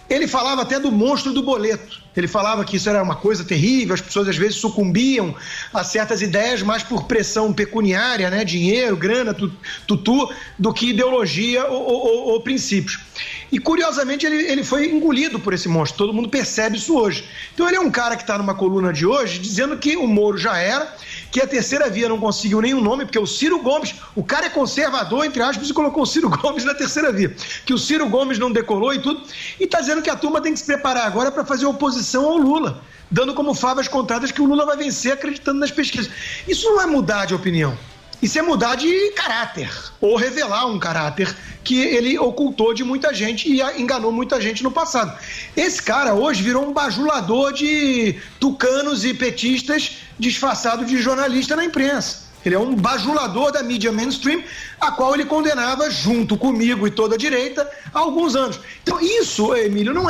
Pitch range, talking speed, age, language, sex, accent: 215-285 Hz, 195 wpm, 50-69, Portuguese, male, Brazilian